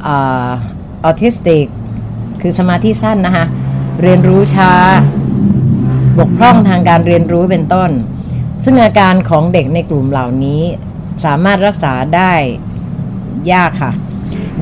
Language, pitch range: Thai, 145-190 Hz